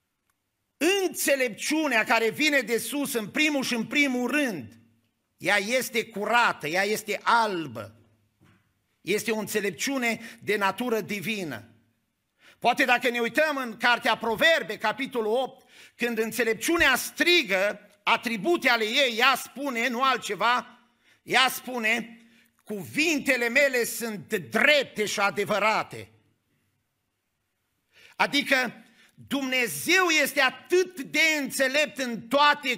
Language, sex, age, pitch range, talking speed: Romanian, male, 50-69, 215-275 Hz, 105 wpm